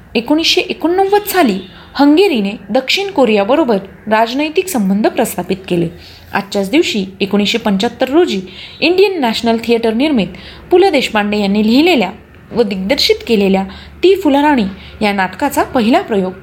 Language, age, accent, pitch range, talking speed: Marathi, 30-49, native, 195-295 Hz, 115 wpm